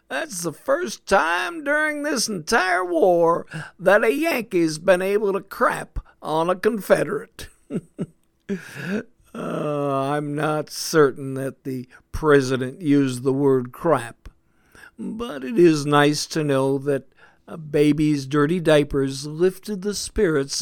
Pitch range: 135-190 Hz